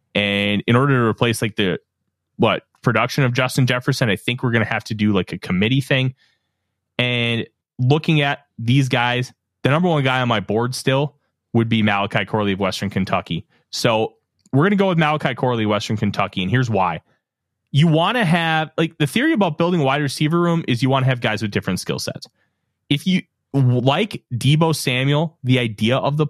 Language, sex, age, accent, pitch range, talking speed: English, male, 20-39, American, 110-155 Hz, 200 wpm